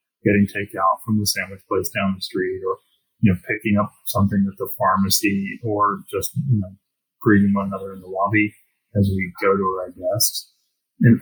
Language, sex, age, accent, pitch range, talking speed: English, male, 30-49, American, 100-120 Hz, 185 wpm